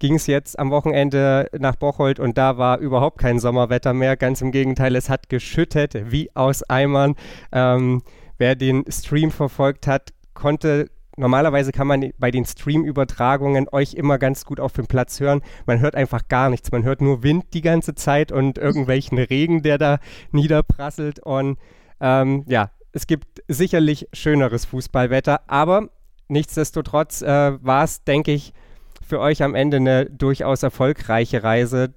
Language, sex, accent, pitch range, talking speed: German, male, German, 125-145 Hz, 160 wpm